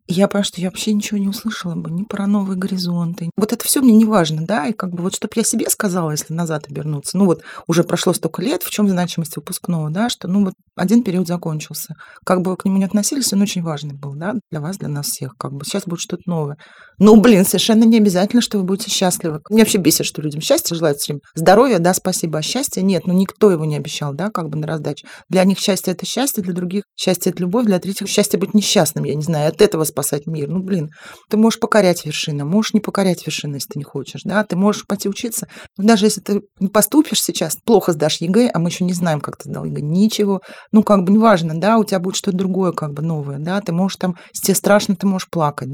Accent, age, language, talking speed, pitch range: native, 30-49, Russian, 245 wpm, 165-205 Hz